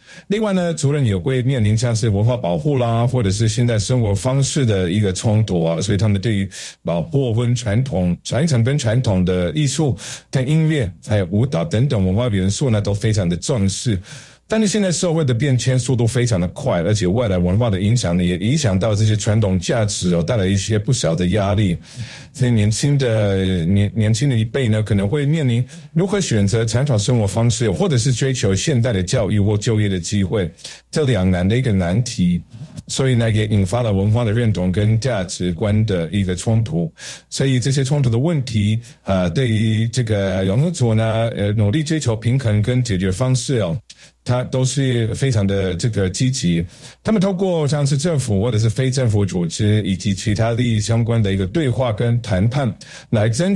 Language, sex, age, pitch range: Chinese, male, 50-69, 100-130 Hz